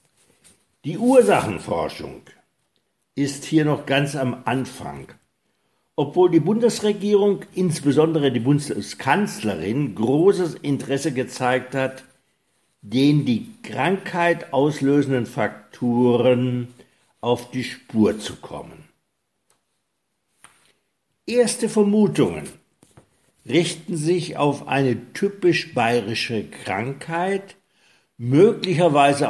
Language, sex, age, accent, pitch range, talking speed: German, male, 60-79, German, 120-175 Hz, 80 wpm